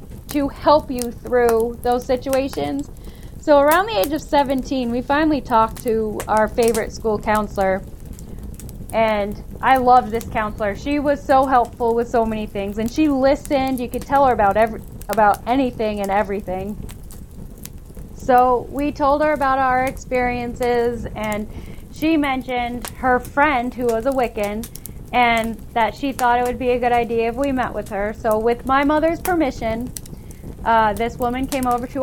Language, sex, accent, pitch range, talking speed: English, female, American, 220-265 Hz, 165 wpm